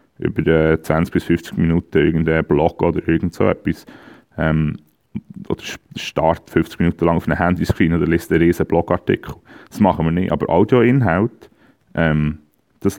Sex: male